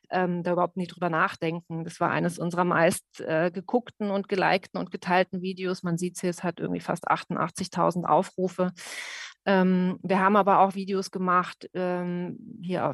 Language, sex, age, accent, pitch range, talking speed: German, female, 30-49, German, 175-190 Hz, 165 wpm